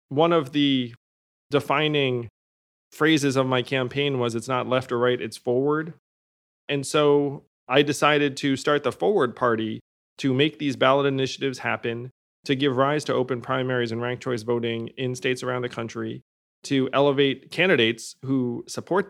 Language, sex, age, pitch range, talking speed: English, male, 30-49, 120-150 Hz, 160 wpm